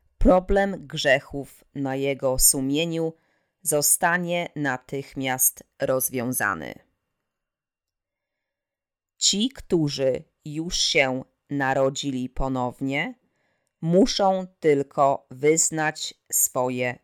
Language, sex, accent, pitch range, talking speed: Polish, female, native, 135-160 Hz, 65 wpm